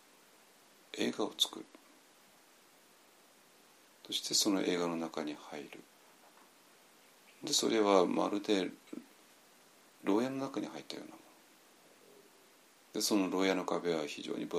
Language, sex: Japanese, male